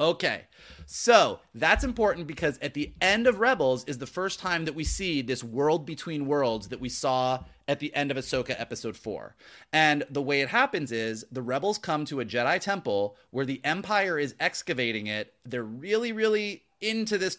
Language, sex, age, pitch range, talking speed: English, male, 30-49, 135-190 Hz, 190 wpm